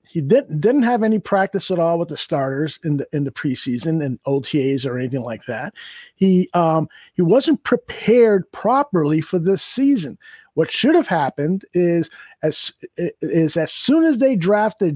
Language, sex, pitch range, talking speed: English, male, 155-220 Hz, 175 wpm